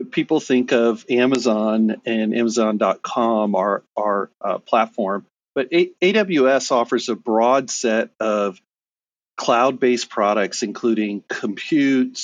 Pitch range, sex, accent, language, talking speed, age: 110-130 Hz, male, American, English, 105 wpm, 40-59